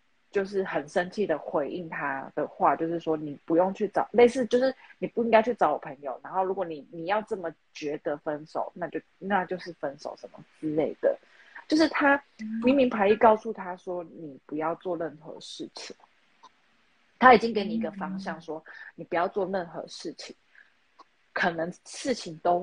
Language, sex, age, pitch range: Chinese, female, 30-49, 165-230 Hz